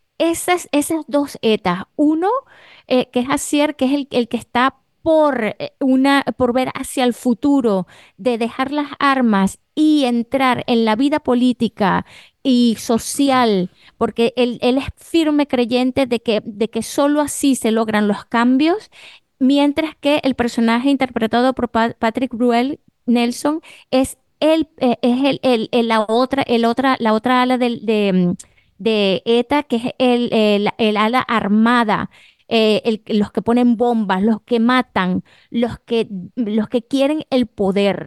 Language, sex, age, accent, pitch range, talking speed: Spanish, female, 20-39, American, 225-275 Hz, 160 wpm